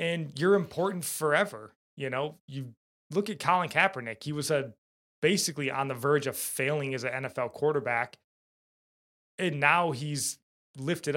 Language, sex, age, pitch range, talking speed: English, male, 20-39, 130-160 Hz, 150 wpm